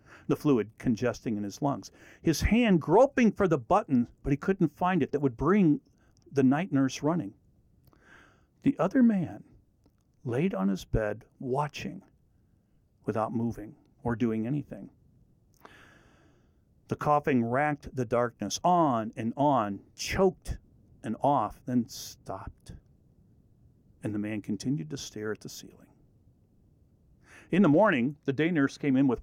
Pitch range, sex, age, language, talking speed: 110-150 Hz, male, 50-69, English, 140 wpm